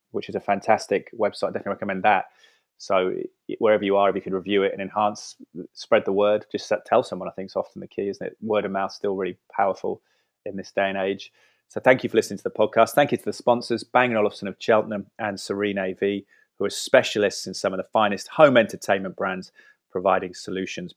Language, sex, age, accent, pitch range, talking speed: English, male, 30-49, British, 100-115 Hz, 225 wpm